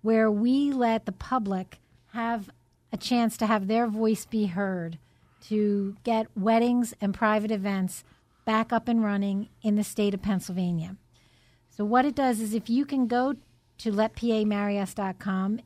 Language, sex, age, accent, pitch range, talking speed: English, female, 50-69, American, 200-235 Hz, 155 wpm